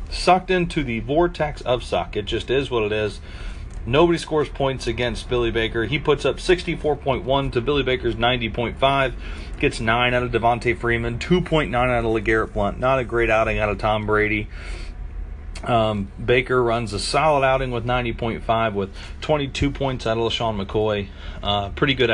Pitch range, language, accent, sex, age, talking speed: 100-130 Hz, English, American, male, 40-59, 170 wpm